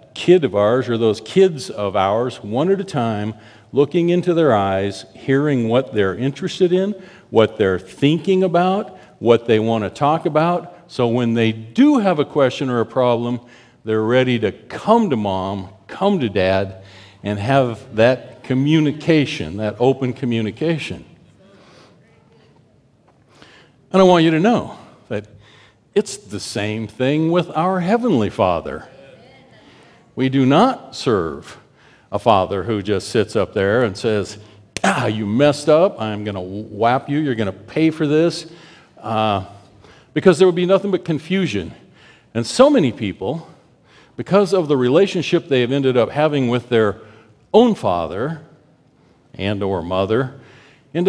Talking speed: 150 wpm